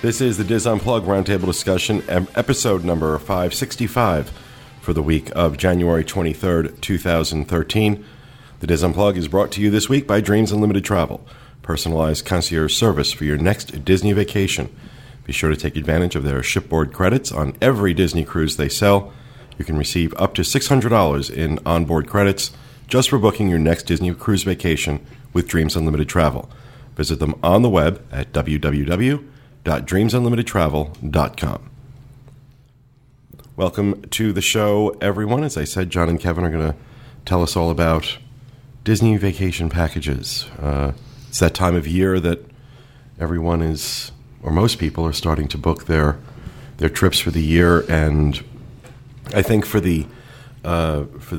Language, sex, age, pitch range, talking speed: English, male, 40-59, 80-120 Hz, 155 wpm